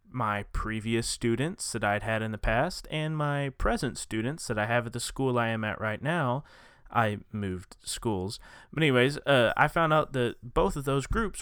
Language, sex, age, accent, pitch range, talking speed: English, male, 20-39, American, 105-135 Hz, 200 wpm